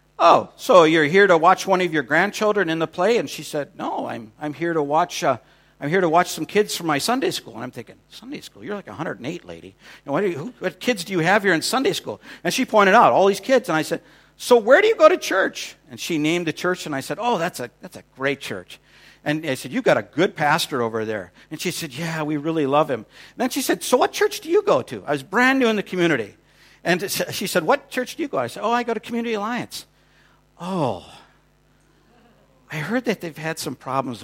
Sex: male